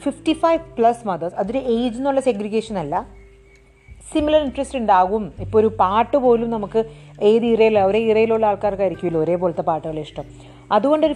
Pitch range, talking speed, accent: 175-240 Hz, 135 wpm, native